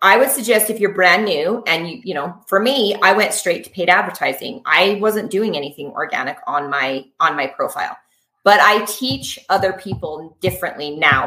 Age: 30-49